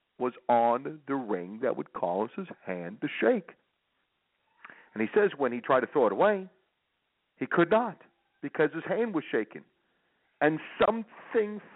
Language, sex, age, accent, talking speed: English, male, 50-69, American, 160 wpm